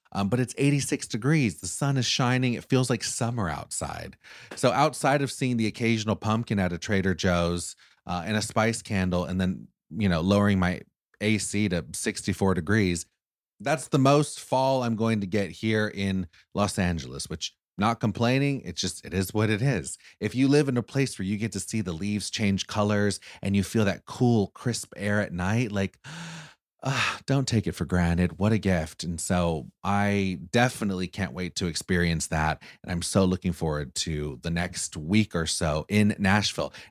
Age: 30-49